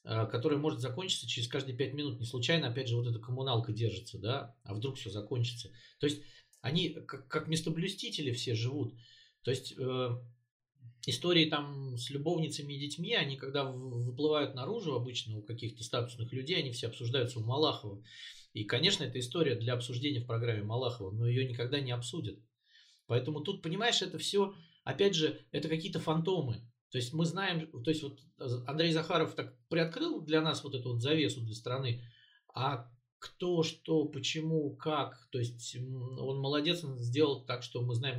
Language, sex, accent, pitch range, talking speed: Russian, male, native, 120-160 Hz, 170 wpm